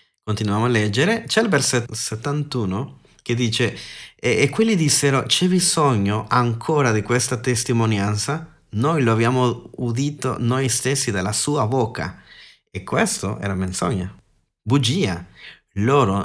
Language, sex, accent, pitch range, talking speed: Italian, male, native, 110-160 Hz, 125 wpm